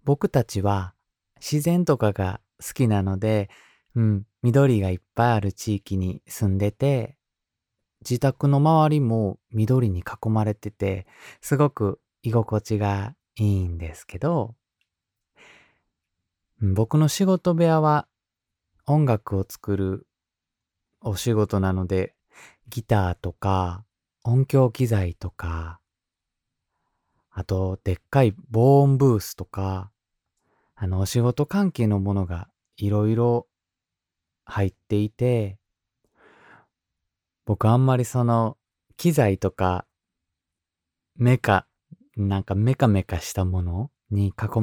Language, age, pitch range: Japanese, 20-39, 95-125 Hz